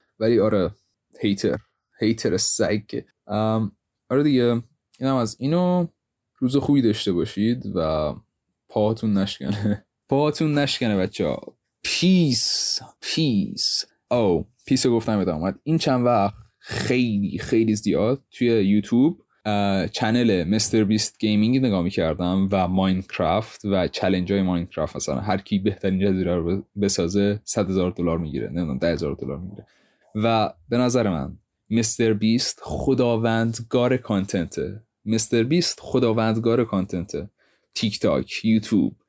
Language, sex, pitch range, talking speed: Persian, male, 100-120 Hz, 110 wpm